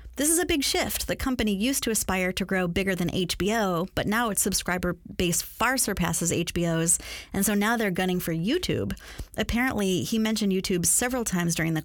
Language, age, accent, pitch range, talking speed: English, 30-49, American, 180-225 Hz, 195 wpm